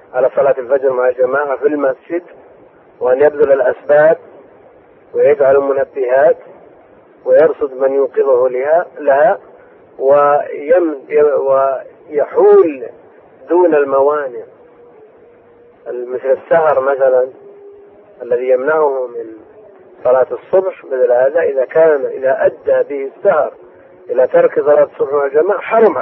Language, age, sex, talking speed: Arabic, 40-59, male, 100 wpm